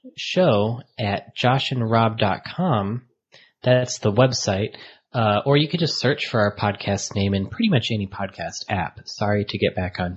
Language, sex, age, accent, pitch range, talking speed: English, male, 30-49, American, 100-130 Hz, 160 wpm